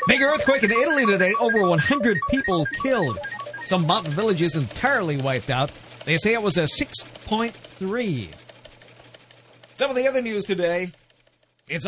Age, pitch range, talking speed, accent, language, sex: 50-69, 150-215 Hz, 140 wpm, American, English, male